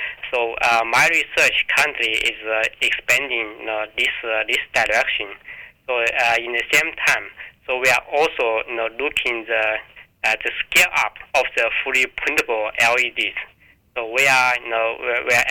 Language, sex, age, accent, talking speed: English, male, 20-39, Japanese, 180 wpm